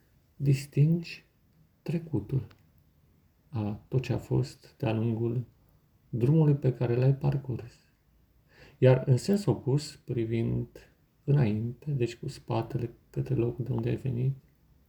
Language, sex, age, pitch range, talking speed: Romanian, male, 40-59, 115-145 Hz, 115 wpm